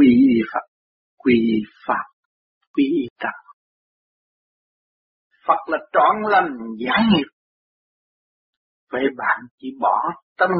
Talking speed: 100 wpm